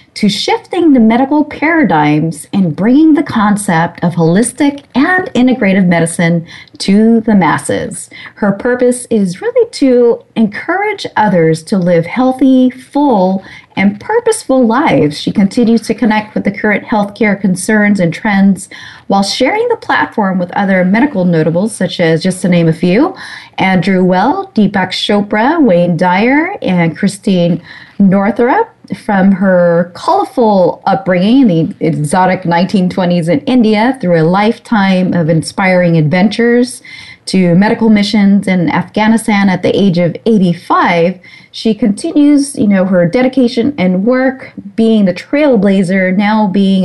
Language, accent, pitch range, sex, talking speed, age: English, American, 180-235 Hz, female, 135 wpm, 40-59